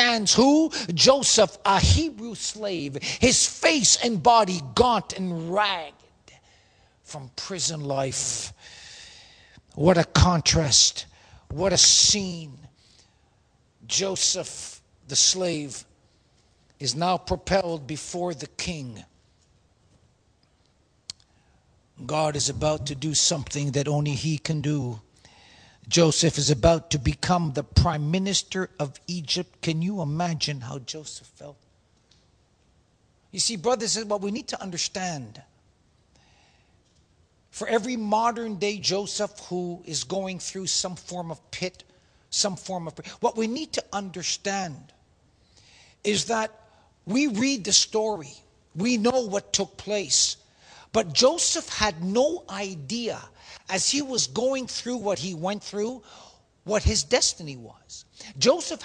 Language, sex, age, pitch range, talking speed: English, male, 50-69, 150-220 Hz, 120 wpm